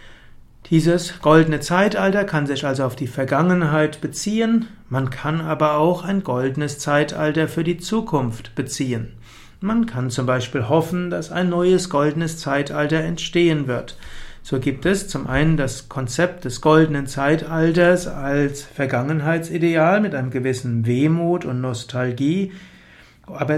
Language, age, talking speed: German, 60-79, 130 wpm